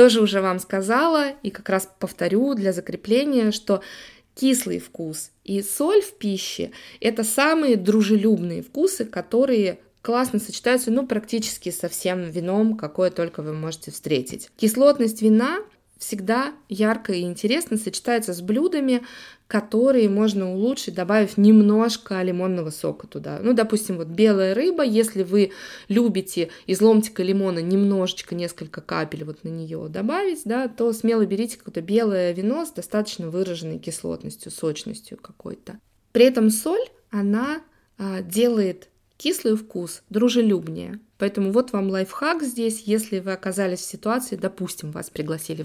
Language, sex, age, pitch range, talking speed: Russian, female, 20-39, 190-235 Hz, 135 wpm